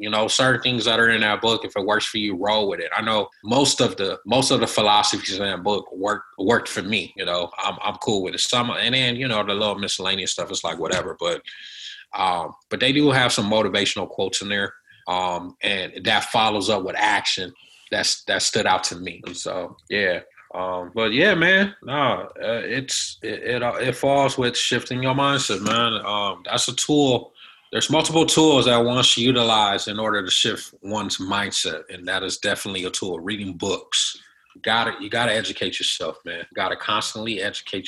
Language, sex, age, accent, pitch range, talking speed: English, male, 20-39, American, 100-125 Hz, 210 wpm